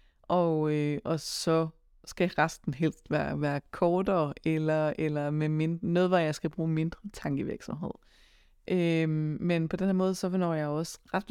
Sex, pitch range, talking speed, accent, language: female, 150-190 Hz, 170 wpm, native, Danish